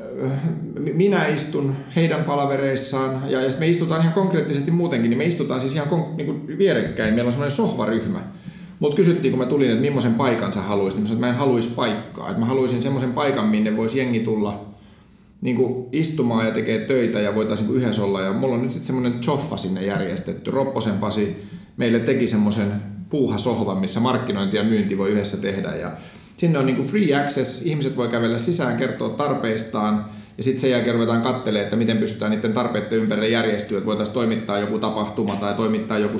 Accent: native